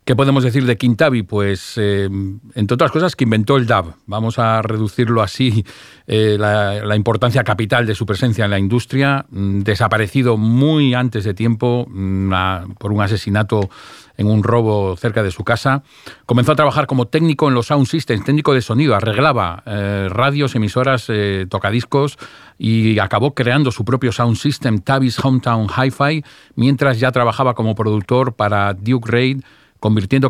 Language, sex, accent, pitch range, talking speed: Spanish, male, Spanish, 105-130 Hz, 160 wpm